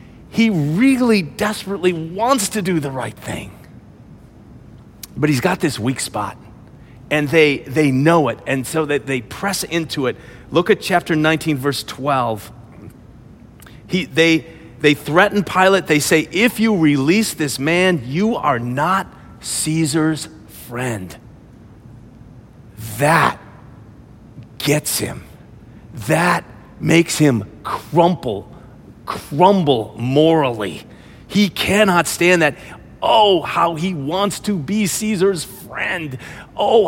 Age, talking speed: 40-59, 115 wpm